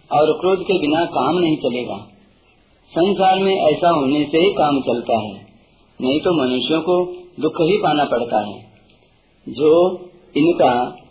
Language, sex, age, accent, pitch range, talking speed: Hindi, male, 50-69, native, 140-180 Hz, 145 wpm